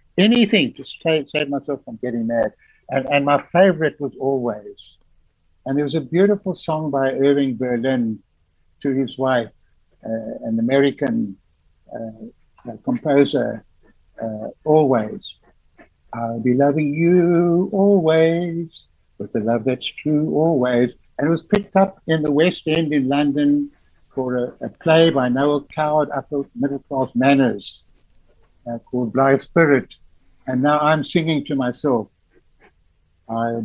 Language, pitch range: English, 125-175 Hz